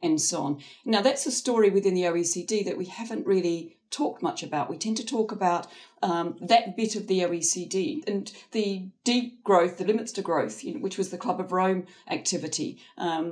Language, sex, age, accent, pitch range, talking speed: English, female, 40-59, British, 180-230 Hz, 200 wpm